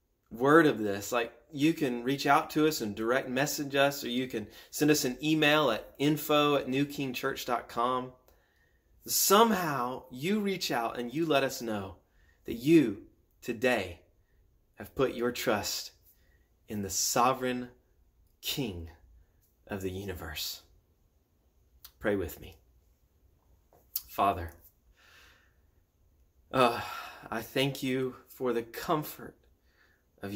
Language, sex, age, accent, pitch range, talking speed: English, male, 30-49, American, 85-130 Hz, 115 wpm